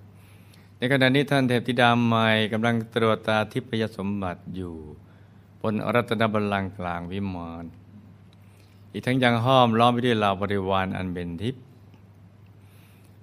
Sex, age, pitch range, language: male, 60-79, 95-110 Hz, Thai